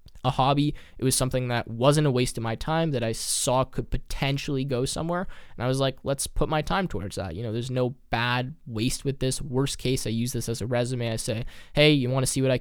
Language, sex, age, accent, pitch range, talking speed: English, male, 10-29, American, 115-145 Hz, 255 wpm